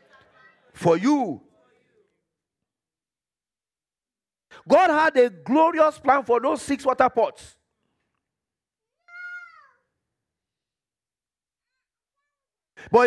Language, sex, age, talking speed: English, male, 50-69, 60 wpm